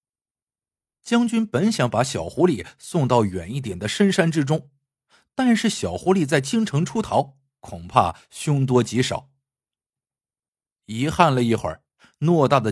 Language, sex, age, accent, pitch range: Chinese, male, 50-69, native, 120-195 Hz